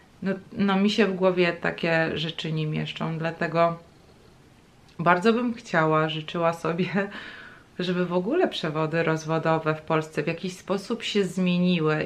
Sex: female